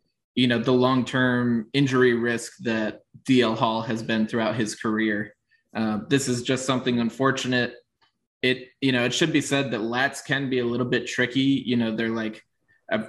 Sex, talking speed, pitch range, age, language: male, 185 wpm, 115-125 Hz, 20-39, English